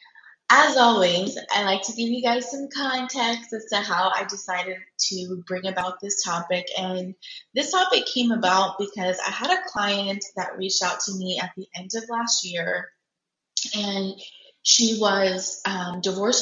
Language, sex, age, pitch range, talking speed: English, female, 20-39, 185-225 Hz, 170 wpm